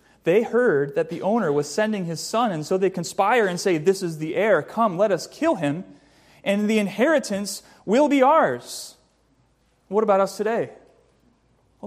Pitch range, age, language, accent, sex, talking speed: 180-230 Hz, 30-49, English, American, male, 175 wpm